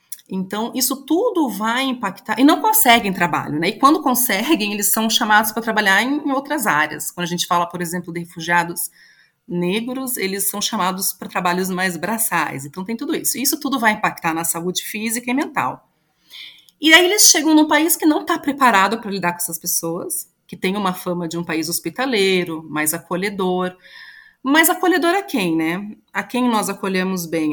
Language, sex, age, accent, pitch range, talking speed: Portuguese, female, 30-49, Brazilian, 175-260 Hz, 185 wpm